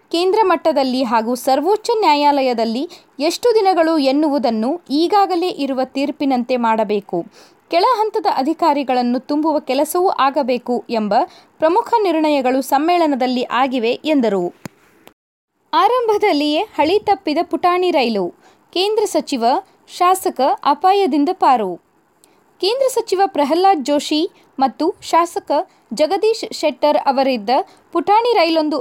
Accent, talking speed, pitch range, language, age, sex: native, 95 wpm, 270-370 Hz, Kannada, 20-39, female